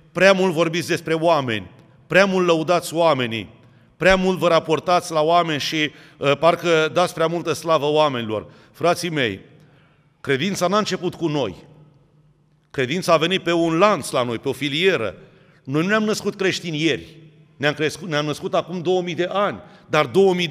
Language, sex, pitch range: Romanian, male, 150-185 Hz